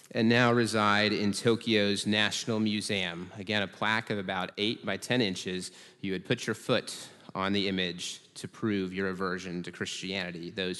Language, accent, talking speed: English, American, 170 wpm